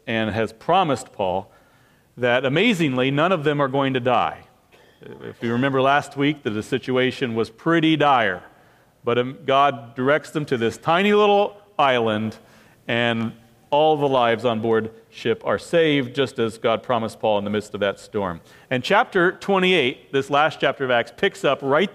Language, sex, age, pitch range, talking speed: English, male, 40-59, 120-160 Hz, 175 wpm